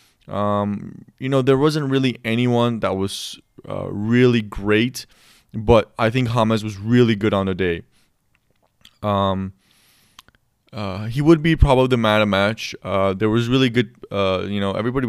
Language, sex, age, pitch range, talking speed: English, male, 20-39, 100-115 Hz, 160 wpm